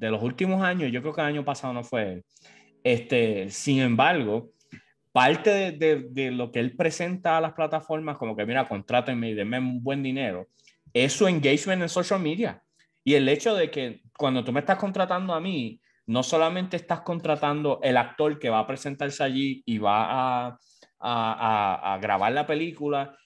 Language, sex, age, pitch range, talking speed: English, male, 20-39, 125-170 Hz, 190 wpm